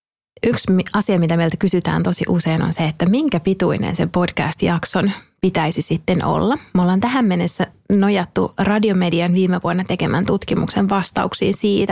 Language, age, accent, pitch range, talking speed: Finnish, 30-49, native, 175-205 Hz, 145 wpm